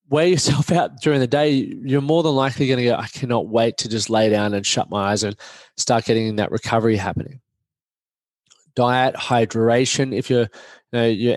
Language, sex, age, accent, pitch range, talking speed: English, male, 20-39, Australian, 120-145 Hz, 180 wpm